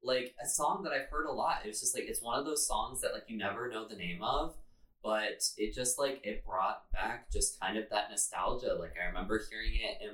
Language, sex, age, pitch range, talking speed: English, male, 20-39, 100-130 Hz, 250 wpm